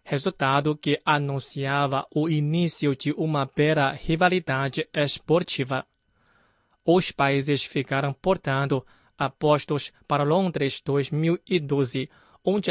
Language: Chinese